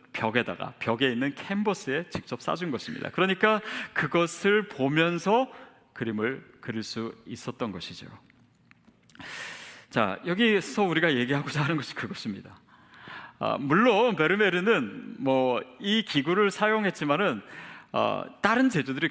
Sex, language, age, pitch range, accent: male, Korean, 40-59, 155-240 Hz, native